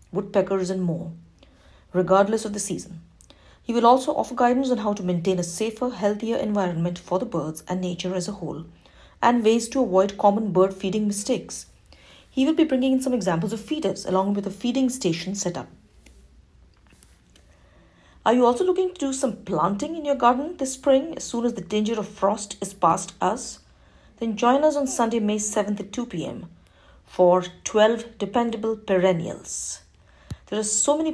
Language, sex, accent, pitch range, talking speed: English, female, Indian, 180-230 Hz, 175 wpm